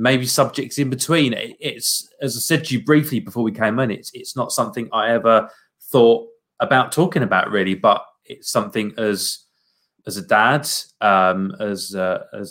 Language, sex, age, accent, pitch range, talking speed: English, male, 20-39, British, 105-130 Hz, 175 wpm